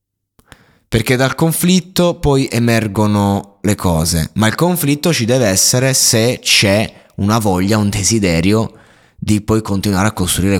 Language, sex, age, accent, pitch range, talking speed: Italian, male, 20-39, native, 90-110 Hz, 135 wpm